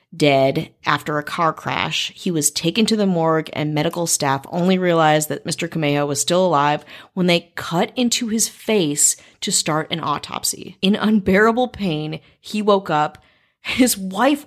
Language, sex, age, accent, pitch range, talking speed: English, female, 30-49, American, 155-200 Hz, 165 wpm